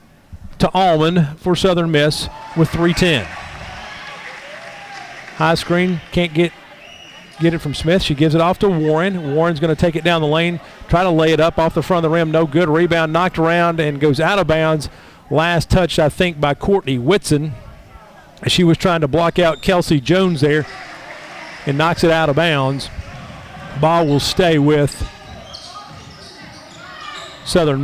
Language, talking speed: English, 165 wpm